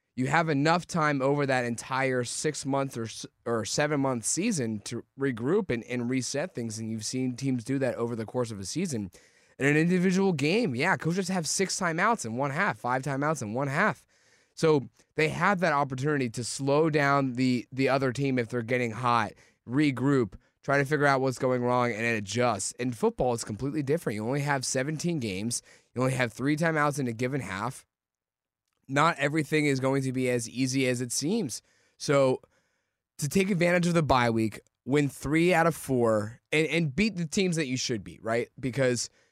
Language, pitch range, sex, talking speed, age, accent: English, 120-150 Hz, male, 195 wpm, 20-39, American